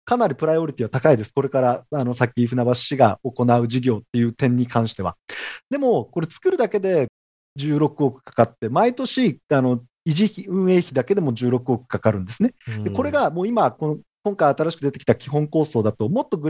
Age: 40-59